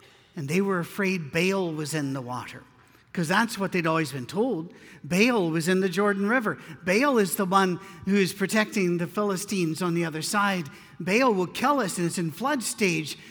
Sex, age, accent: male, 50-69, American